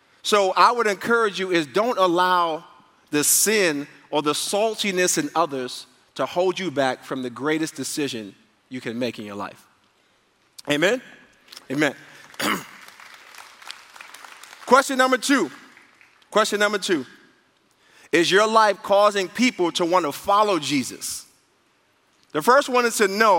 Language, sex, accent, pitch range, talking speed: English, male, American, 160-225 Hz, 135 wpm